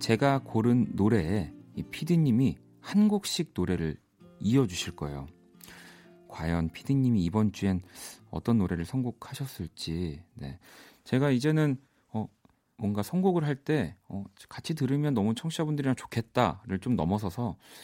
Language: Korean